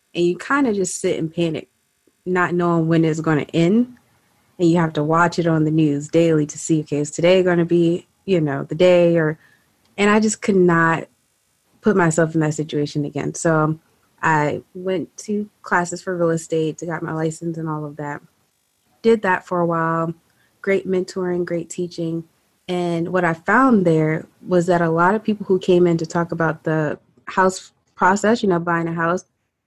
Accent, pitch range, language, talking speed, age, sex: American, 160-190 Hz, English, 200 wpm, 20-39, female